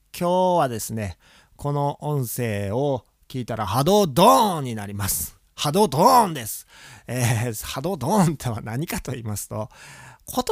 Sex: male